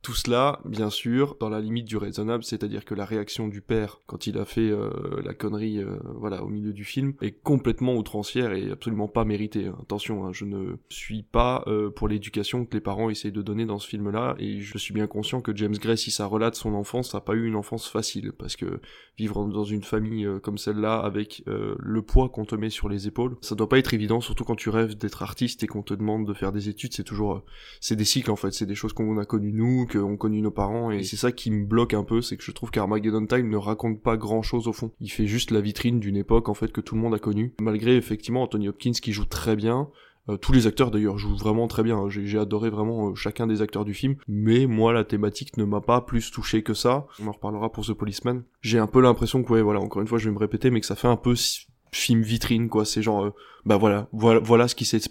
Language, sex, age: French, male, 20-39